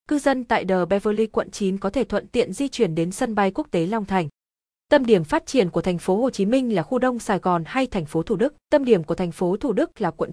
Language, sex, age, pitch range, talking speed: Vietnamese, female, 20-39, 185-230 Hz, 285 wpm